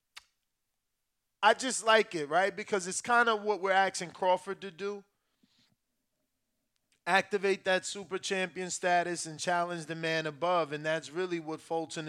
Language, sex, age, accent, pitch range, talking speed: English, male, 20-39, American, 155-190 Hz, 150 wpm